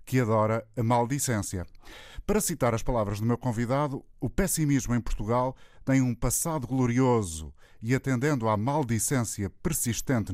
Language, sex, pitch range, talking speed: Portuguese, male, 105-130 Hz, 140 wpm